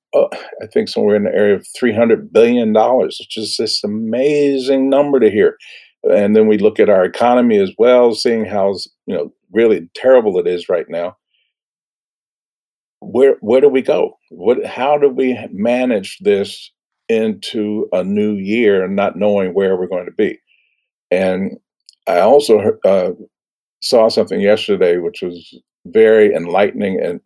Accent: American